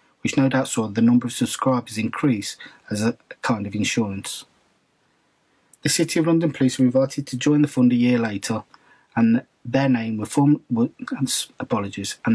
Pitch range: 110-135 Hz